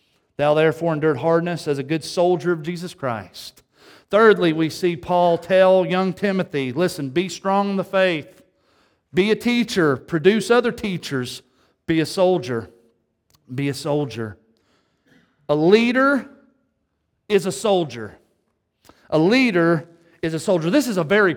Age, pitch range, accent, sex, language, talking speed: 40-59, 145-205 Hz, American, male, English, 140 wpm